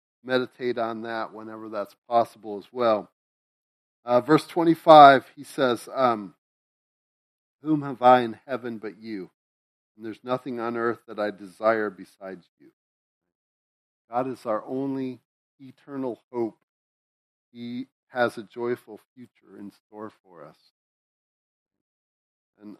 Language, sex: English, male